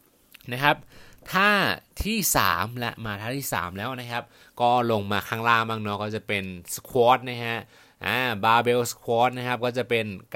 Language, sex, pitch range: Thai, male, 100-125 Hz